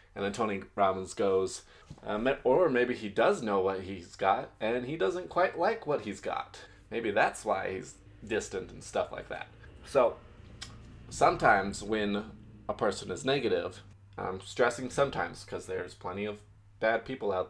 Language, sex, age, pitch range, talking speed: English, male, 20-39, 90-110 Hz, 165 wpm